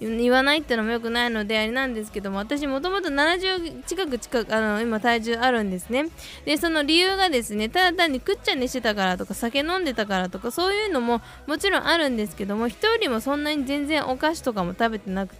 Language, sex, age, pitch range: Japanese, female, 20-39, 220-280 Hz